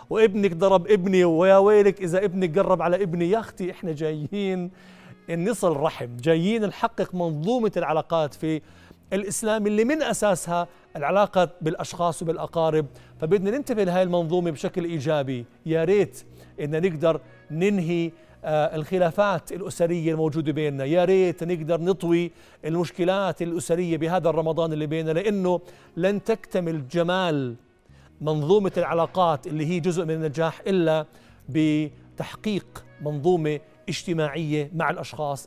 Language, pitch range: Arabic, 155-195 Hz